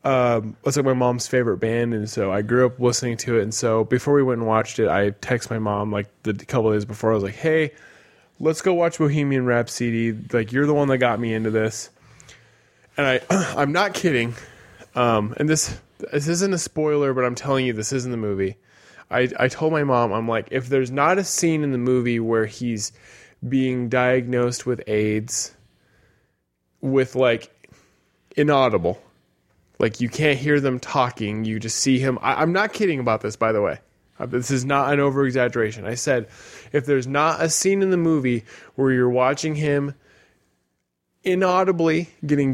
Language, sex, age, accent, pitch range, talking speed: English, male, 20-39, American, 115-145 Hz, 190 wpm